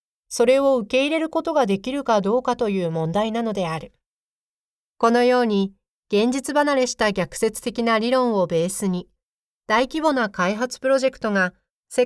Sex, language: female, Japanese